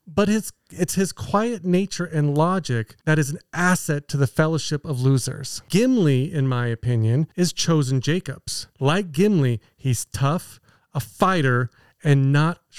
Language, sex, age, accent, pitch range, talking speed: English, male, 40-59, American, 135-185 Hz, 150 wpm